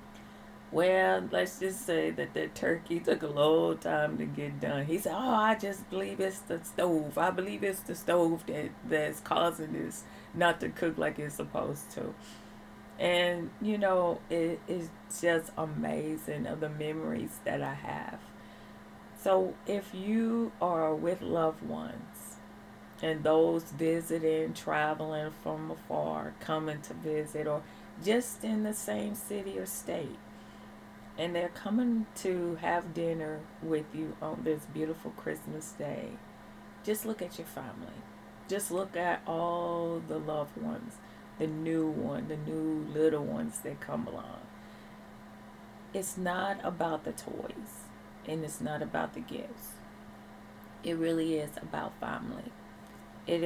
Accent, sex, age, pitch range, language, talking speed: American, female, 30-49, 155-190 Hz, English, 145 wpm